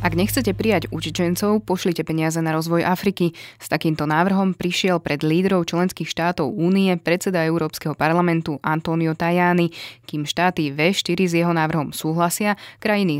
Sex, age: female, 20-39